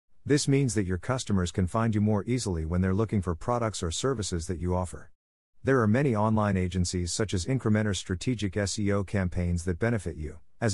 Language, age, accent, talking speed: English, 50-69, American, 195 wpm